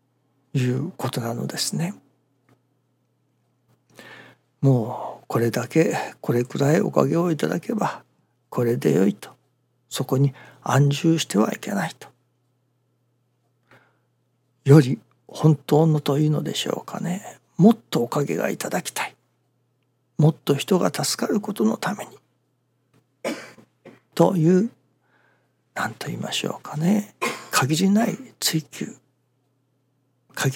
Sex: male